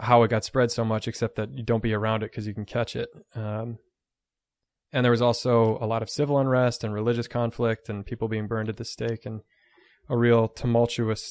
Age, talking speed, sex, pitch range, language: 20-39, 225 wpm, male, 110-120 Hz, English